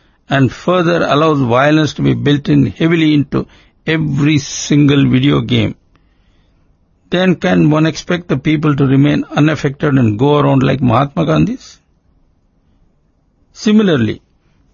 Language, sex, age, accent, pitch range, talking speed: English, male, 50-69, Indian, 120-155 Hz, 120 wpm